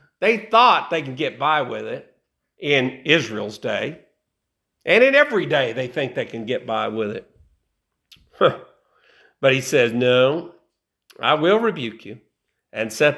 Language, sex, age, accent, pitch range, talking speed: English, male, 50-69, American, 155-240 Hz, 150 wpm